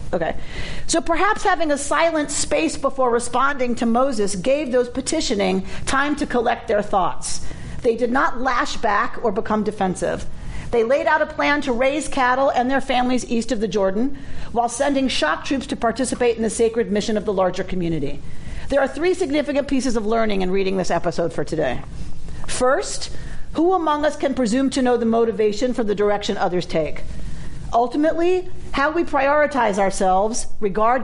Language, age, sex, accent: English, 50-69, female, American